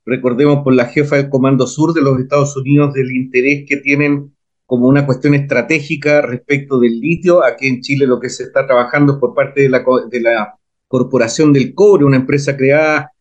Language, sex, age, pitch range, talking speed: Spanish, male, 40-59, 135-175 Hz, 195 wpm